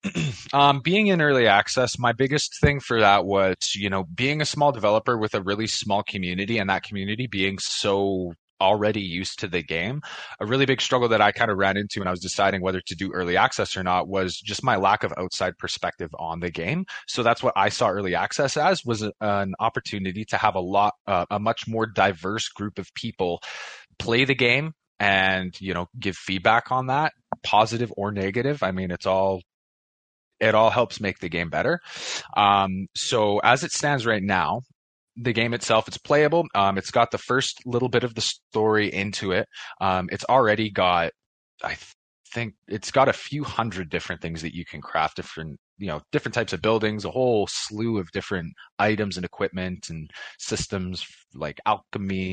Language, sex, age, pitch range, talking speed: English, male, 20-39, 95-120 Hz, 195 wpm